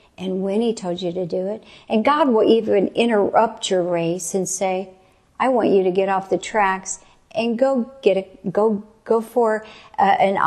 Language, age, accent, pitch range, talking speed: English, 50-69, American, 185-215 Hz, 195 wpm